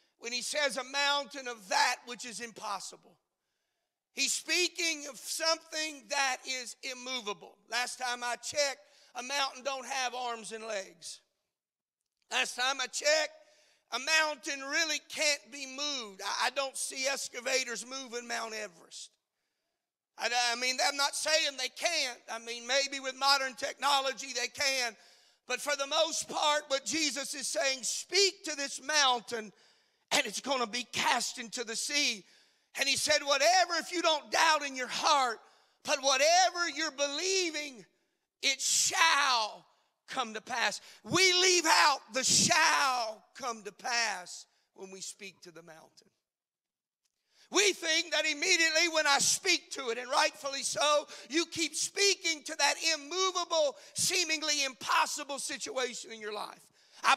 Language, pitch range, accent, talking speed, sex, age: English, 245-315 Hz, American, 150 wpm, male, 40-59